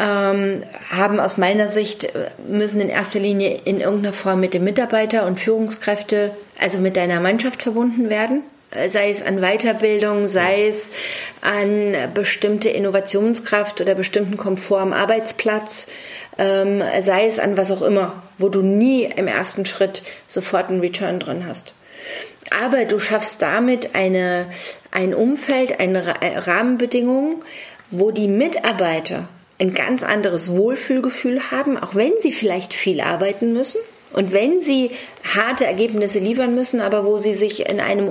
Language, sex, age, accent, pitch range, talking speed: German, female, 30-49, German, 195-240 Hz, 140 wpm